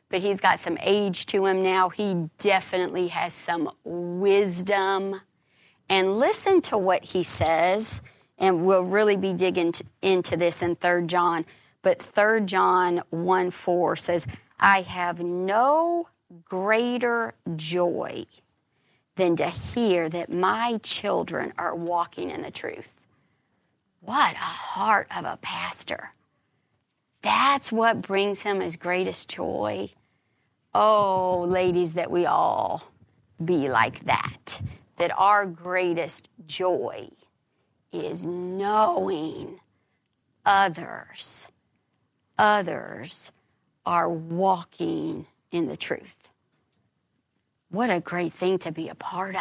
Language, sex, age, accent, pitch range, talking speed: English, female, 40-59, American, 170-200 Hz, 110 wpm